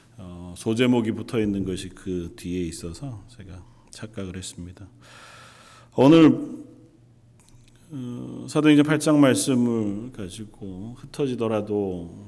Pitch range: 95-130 Hz